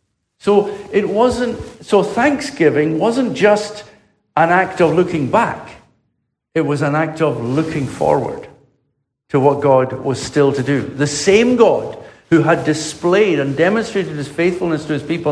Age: 60-79